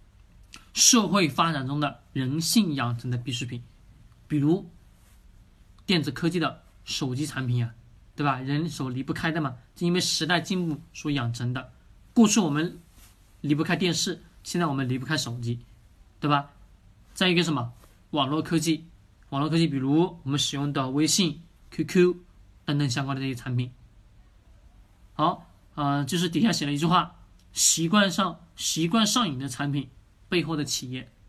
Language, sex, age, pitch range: Chinese, male, 20-39, 120-175 Hz